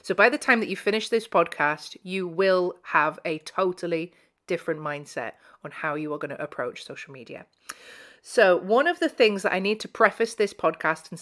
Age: 30-49